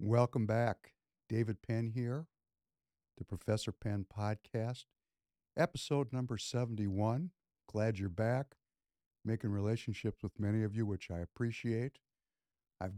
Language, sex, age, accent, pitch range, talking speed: English, male, 60-79, American, 95-115 Hz, 115 wpm